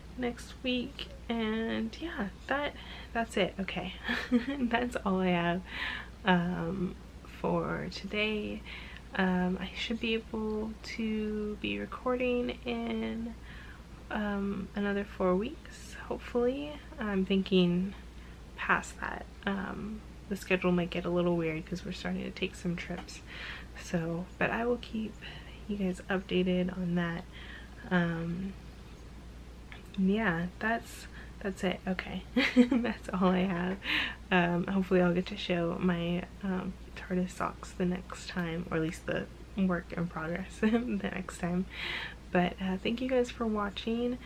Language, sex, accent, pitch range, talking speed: English, female, American, 180-210 Hz, 130 wpm